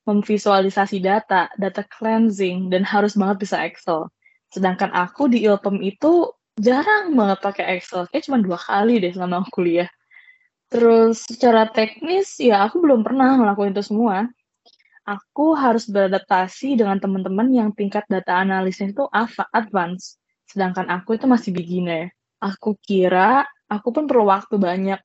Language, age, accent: Indonesian, 20-39, native